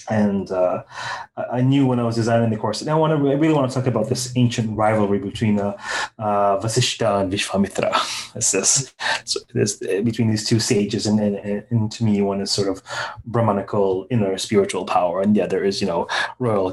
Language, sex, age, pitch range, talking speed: English, male, 30-49, 105-125 Hz, 195 wpm